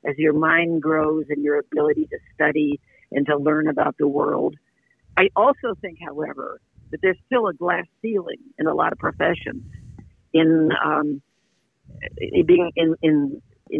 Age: 50-69